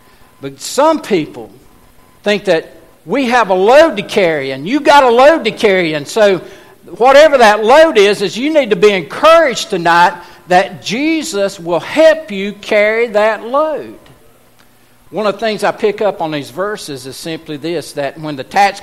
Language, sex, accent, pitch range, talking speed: English, male, American, 165-235 Hz, 180 wpm